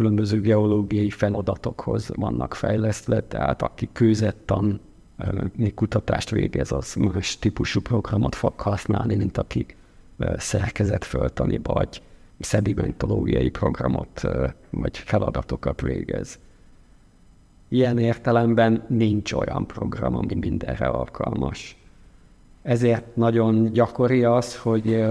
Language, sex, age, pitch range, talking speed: Hungarian, male, 50-69, 100-115 Hz, 90 wpm